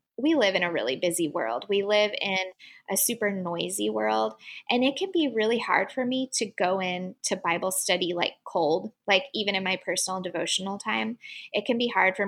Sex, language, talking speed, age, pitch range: female, English, 205 wpm, 10-29, 185-230 Hz